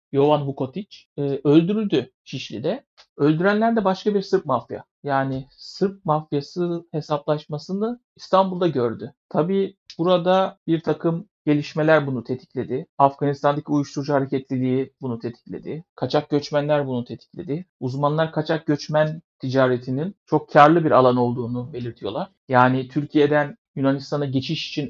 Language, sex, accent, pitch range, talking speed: Turkish, male, native, 135-170 Hz, 115 wpm